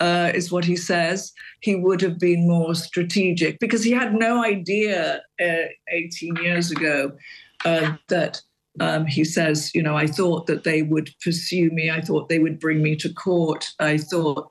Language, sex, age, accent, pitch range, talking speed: English, female, 50-69, British, 155-175 Hz, 180 wpm